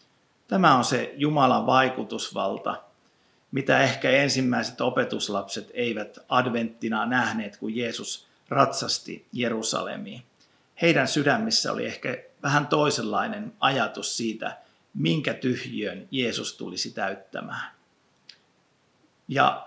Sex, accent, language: male, native, Finnish